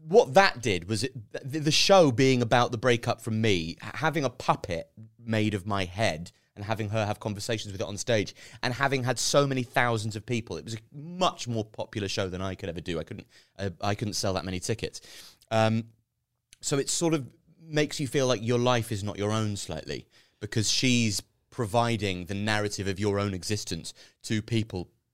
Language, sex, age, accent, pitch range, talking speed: English, male, 30-49, British, 95-120 Hz, 205 wpm